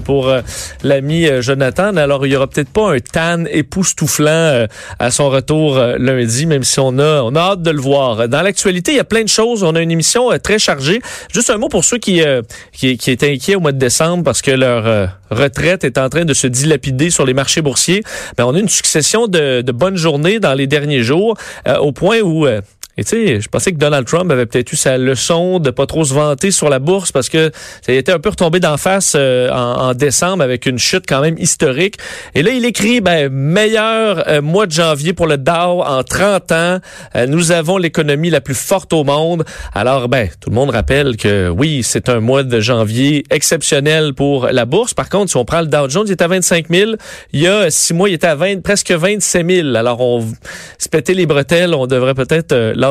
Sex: male